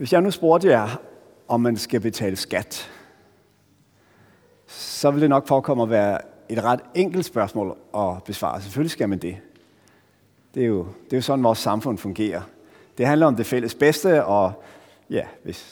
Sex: male